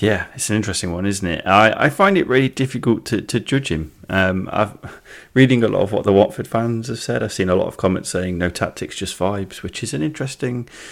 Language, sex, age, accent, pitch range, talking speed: English, male, 30-49, British, 85-105 Hz, 245 wpm